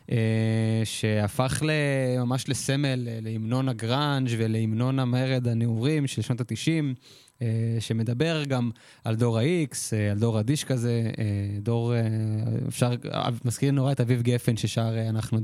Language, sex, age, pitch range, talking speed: Hebrew, male, 20-39, 110-130 Hz, 130 wpm